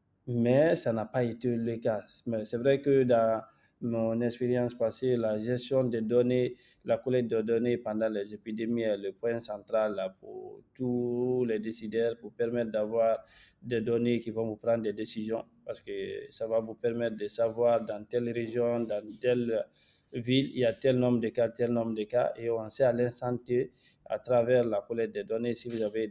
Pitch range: 110-125 Hz